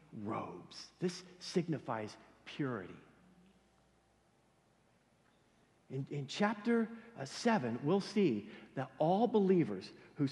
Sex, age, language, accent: male, 50-69, English, American